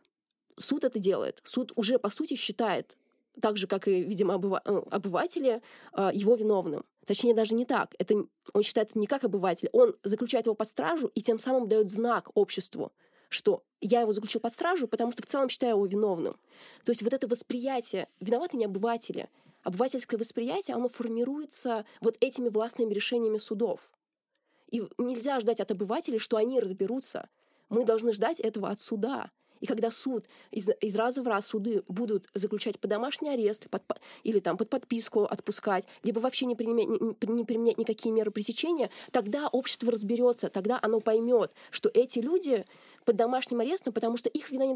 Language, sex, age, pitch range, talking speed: Russian, female, 20-39, 215-255 Hz, 170 wpm